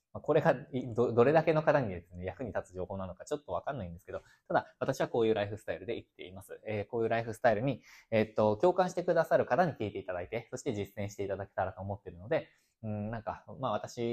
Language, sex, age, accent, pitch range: Japanese, male, 20-39, native, 100-130 Hz